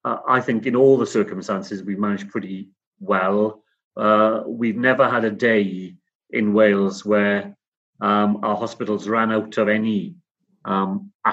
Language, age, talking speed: English, 30-49, 150 wpm